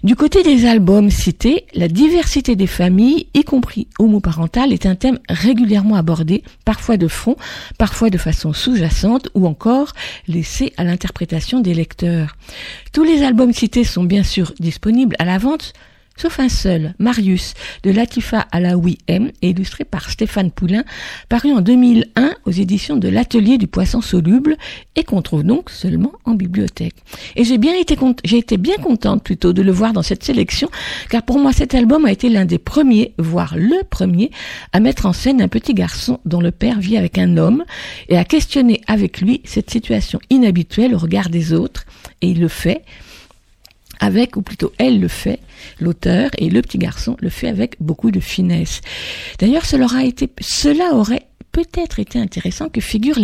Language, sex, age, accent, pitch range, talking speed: French, female, 50-69, French, 180-250 Hz, 180 wpm